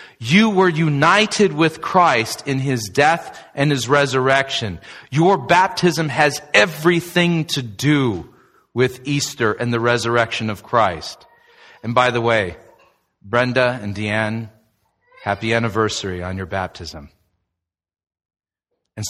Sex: male